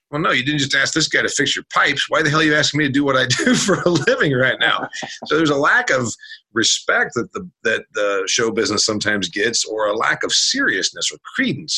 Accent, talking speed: American, 255 wpm